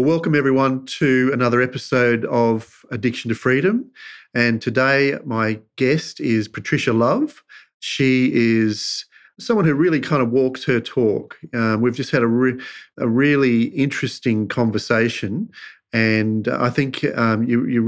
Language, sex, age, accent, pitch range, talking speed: English, male, 40-59, Australian, 115-140 Hz, 135 wpm